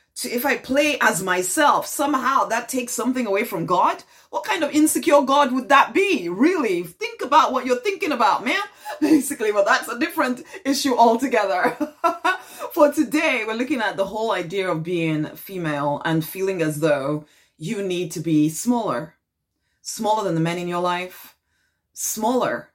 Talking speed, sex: 170 wpm, female